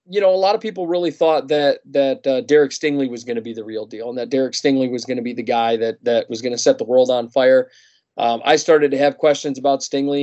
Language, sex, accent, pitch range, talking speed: English, male, American, 125-150 Hz, 280 wpm